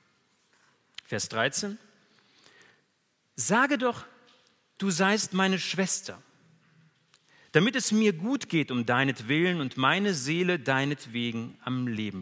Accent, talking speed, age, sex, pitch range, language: German, 110 wpm, 40-59, male, 130-190 Hz, German